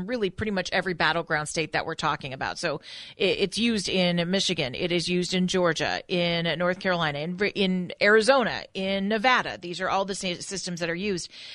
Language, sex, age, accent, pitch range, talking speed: English, female, 40-59, American, 175-210 Hz, 190 wpm